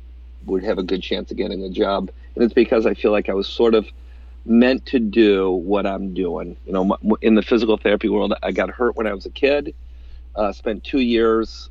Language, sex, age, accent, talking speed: English, male, 40-59, American, 225 wpm